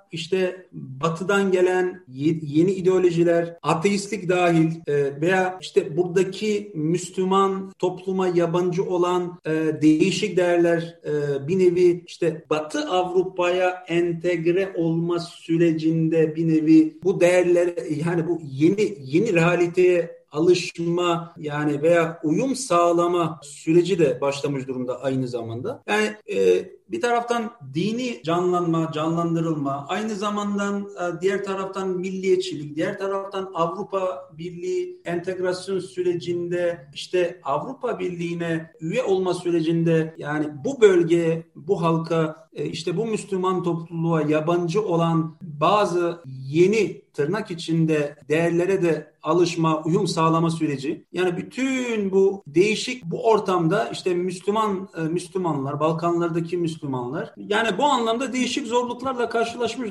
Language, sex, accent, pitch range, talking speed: Turkish, male, native, 160-195 Hz, 110 wpm